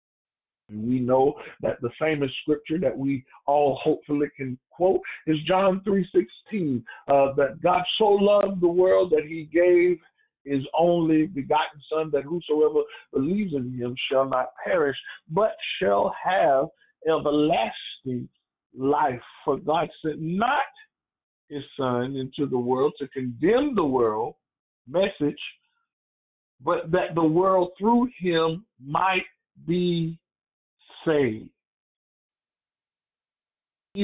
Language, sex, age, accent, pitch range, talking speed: English, male, 50-69, American, 140-185 Hz, 120 wpm